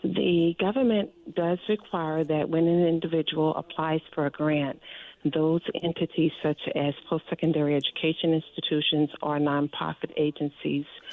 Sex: female